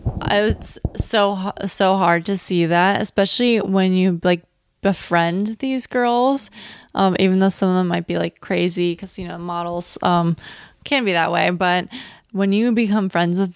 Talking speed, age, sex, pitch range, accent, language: 175 wpm, 20-39, female, 175-195 Hz, American, English